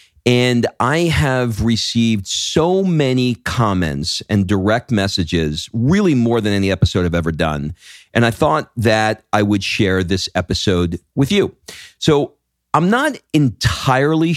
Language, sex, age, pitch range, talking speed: English, male, 40-59, 95-120 Hz, 140 wpm